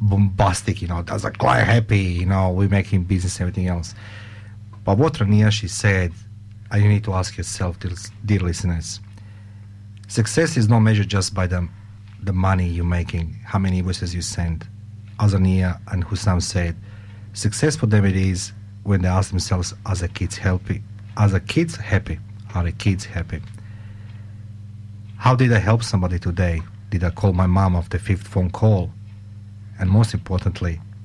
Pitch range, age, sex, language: 90-105 Hz, 40-59, male, English